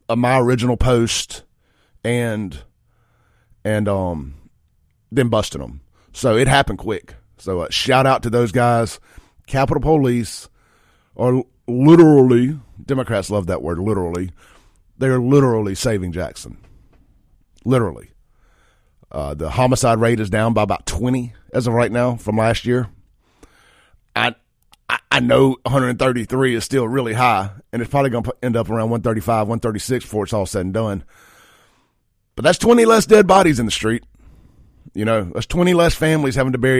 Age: 40-59